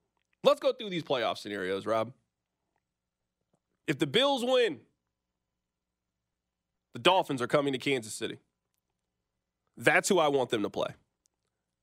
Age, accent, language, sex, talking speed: 30-49, American, English, male, 125 wpm